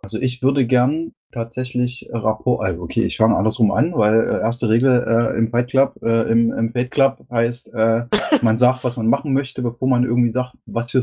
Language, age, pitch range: German, 20-39, 110-130 Hz